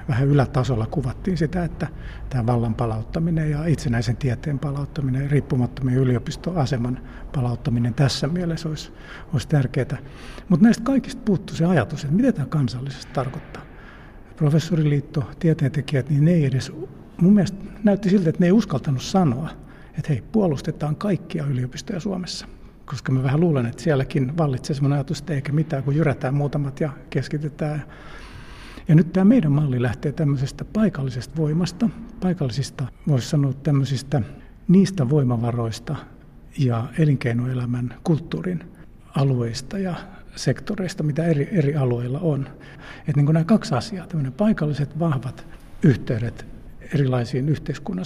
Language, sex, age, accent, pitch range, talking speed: Finnish, male, 60-79, native, 130-170 Hz, 130 wpm